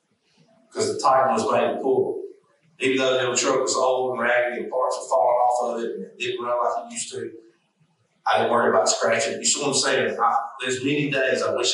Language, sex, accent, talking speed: English, male, American, 240 wpm